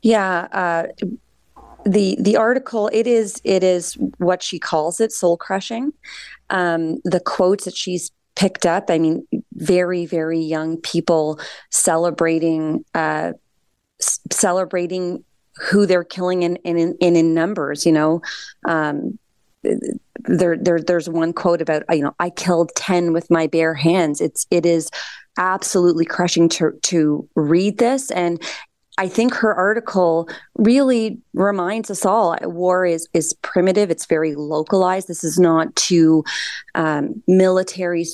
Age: 30-49